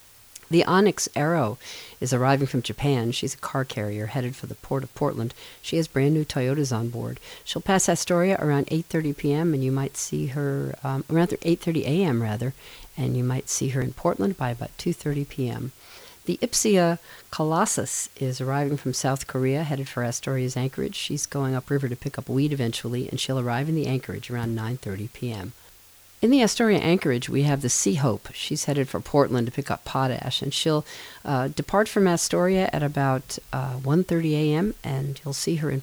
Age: 50-69